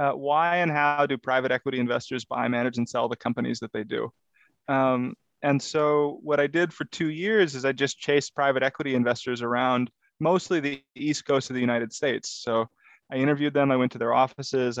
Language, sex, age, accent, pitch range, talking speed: English, male, 20-39, American, 125-145 Hz, 205 wpm